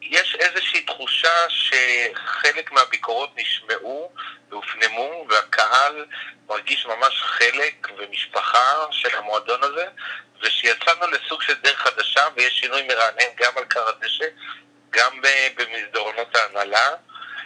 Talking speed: 100 wpm